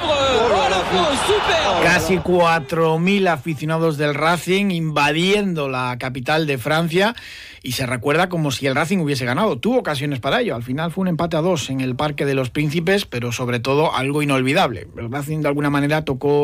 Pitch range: 125-160 Hz